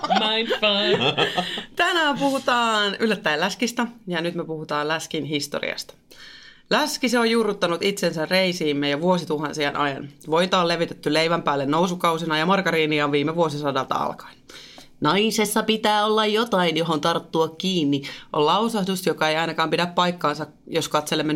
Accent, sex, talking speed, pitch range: native, female, 125 wpm, 155-205 Hz